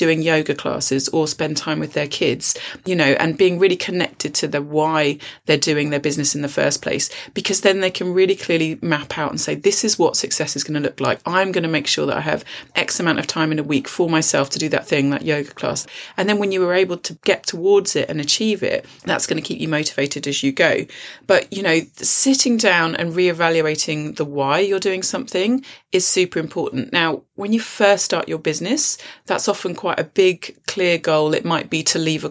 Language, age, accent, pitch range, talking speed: English, 30-49, British, 150-190 Hz, 235 wpm